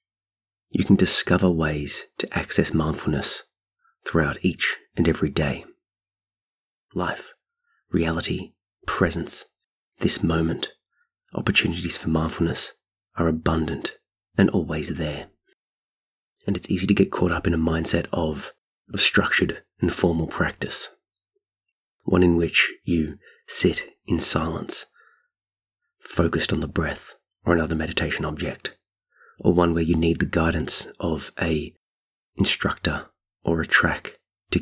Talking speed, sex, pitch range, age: 120 wpm, male, 80-90 Hz, 30-49